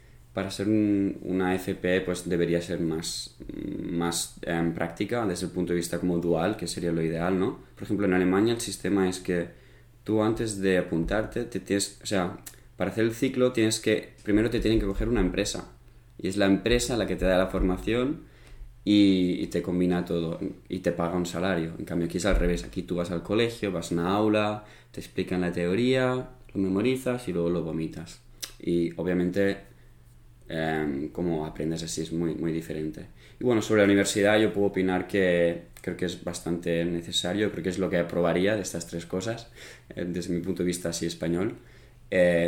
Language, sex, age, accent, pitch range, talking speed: Spanish, male, 20-39, Spanish, 85-105 Hz, 200 wpm